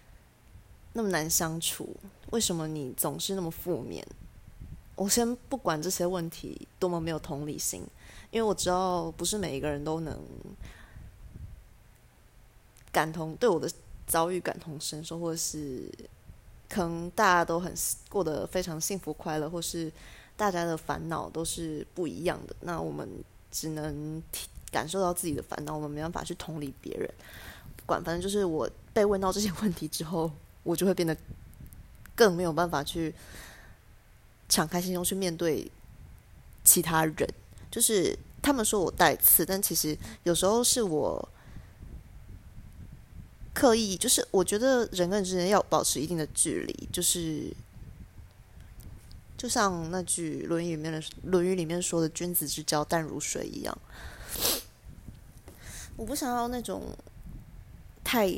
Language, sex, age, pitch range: Chinese, female, 20-39, 155-185 Hz